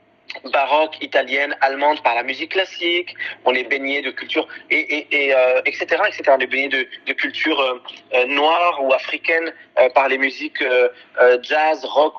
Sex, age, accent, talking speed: male, 30-49, French, 180 wpm